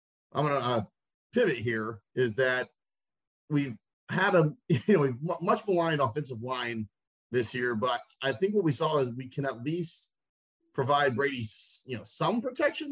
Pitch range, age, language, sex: 115-150 Hz, 30-49, English, male